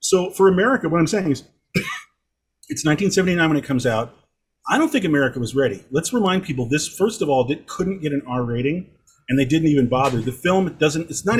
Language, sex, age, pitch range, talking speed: English, male, 40-59, 120-160 Hz, 220 wpm